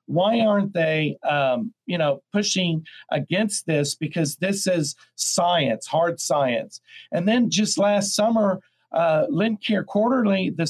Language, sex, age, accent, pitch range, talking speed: English, male, 50-69, American, 160-205 Hz, 140 wpm